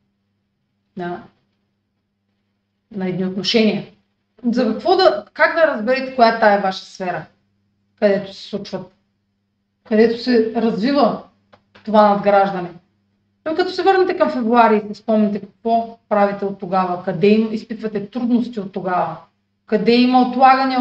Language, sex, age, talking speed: Bulgarian, female, 30-49, 125 wpm